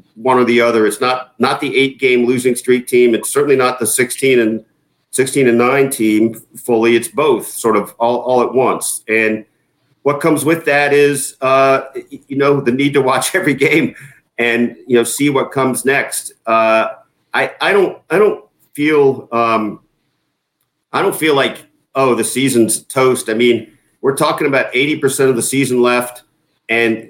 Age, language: 50-69, English